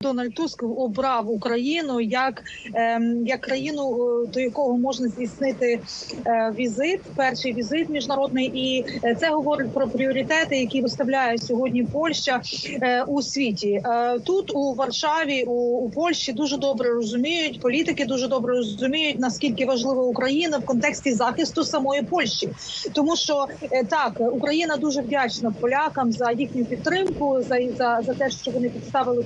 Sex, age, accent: female, 30-49, native